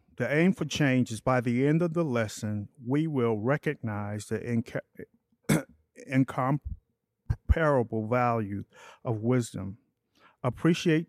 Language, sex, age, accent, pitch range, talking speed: English, male, 50-69, American, 110-135 Hz, 115 wpm